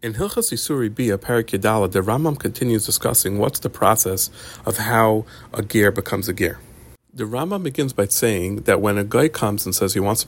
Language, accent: English, American